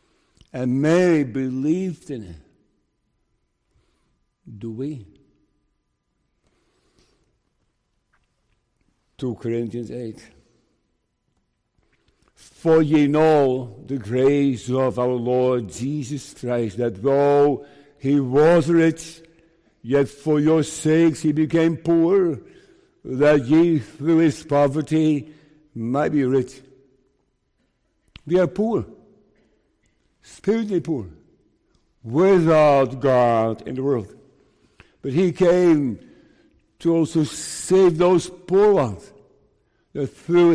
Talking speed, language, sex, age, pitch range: 90 wpm, English, male, 60-79, 130-165 Hz